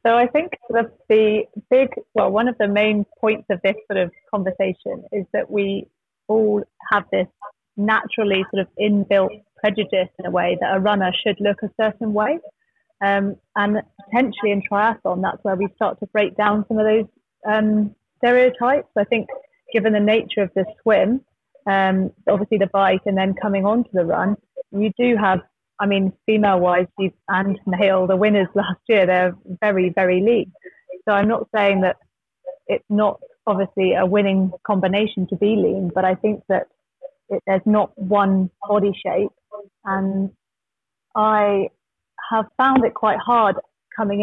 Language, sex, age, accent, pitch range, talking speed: Danish, female, 30-49, British, 195-220 Hz, 165 wpm